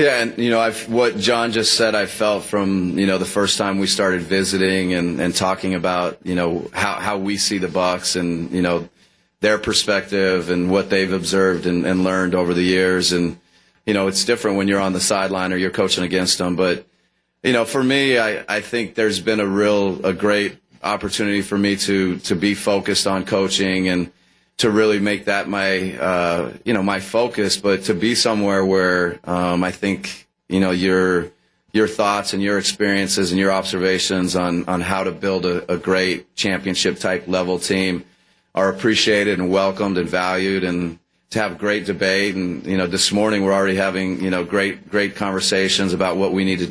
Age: 30-49